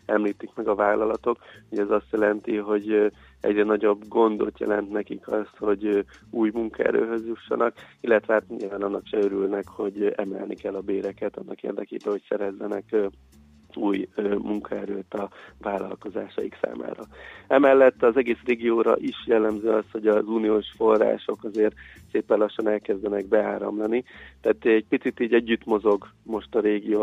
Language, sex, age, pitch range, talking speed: Hungarian, male, 30-49, 100-110 Hz, 140 wpm